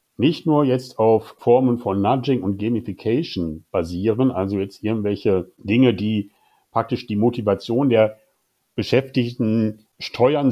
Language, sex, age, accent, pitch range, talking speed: German, male, 60-79, German, 105-130 Hz, 120 wpm